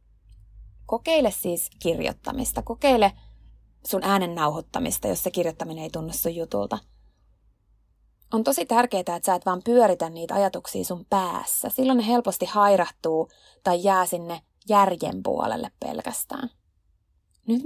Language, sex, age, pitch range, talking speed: Finnish, female, 20-39, 165-245 Hz, 120 wpm